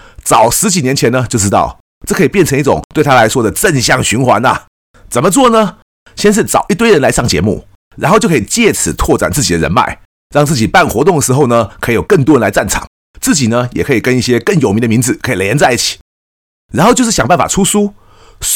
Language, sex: Chinese, male